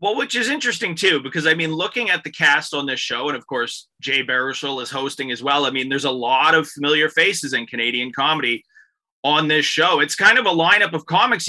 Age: 30-49